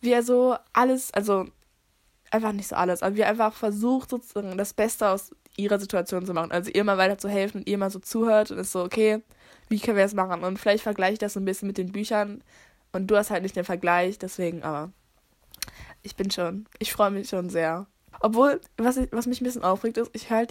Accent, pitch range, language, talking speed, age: German, 185-220 Hz, German, 235 wpm, 20-39